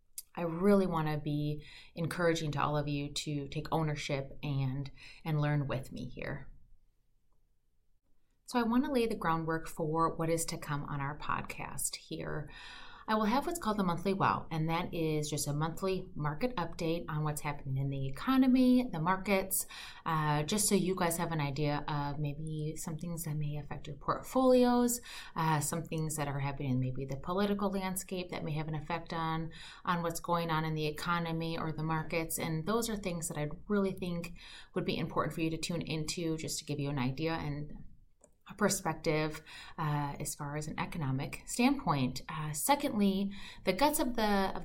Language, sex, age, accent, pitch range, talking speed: English, female, 30-49, American, 150-185 Hz, 190 wpm